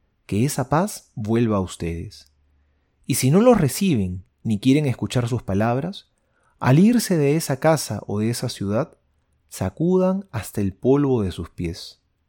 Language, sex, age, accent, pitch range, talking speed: Spanish, male, 30-49, Argentinian, 95-145 Hz, 155 wpm